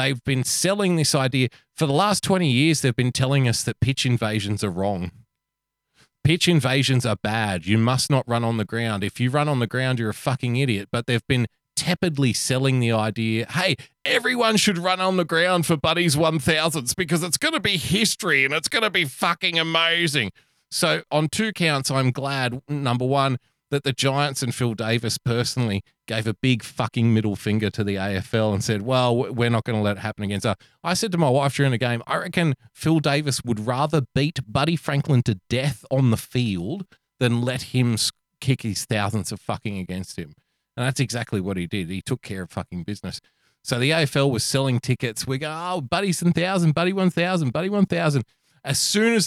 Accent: Australian